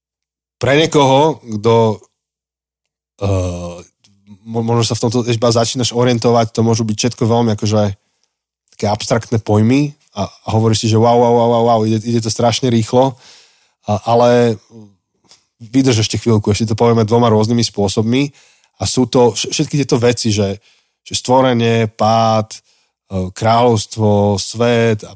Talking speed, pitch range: 135 wpm, 100-120 Hz